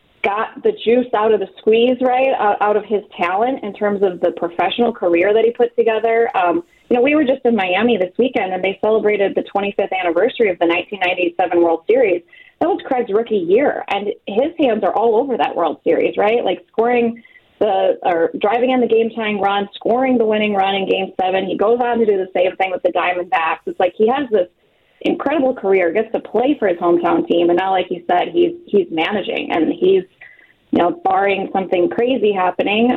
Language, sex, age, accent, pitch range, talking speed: English, female, 20-39, American, 185-270 Hz, 215 wpm